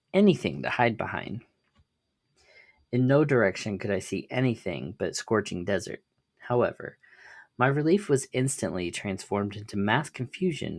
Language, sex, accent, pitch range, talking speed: English, male, American, 100-140 Hz, 130 wpm